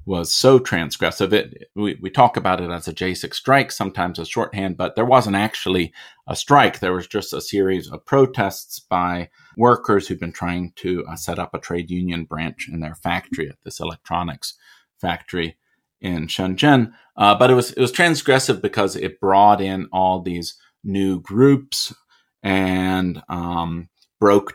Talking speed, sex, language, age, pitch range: 170 wpm, male, English, 30-49, 85-100 Hz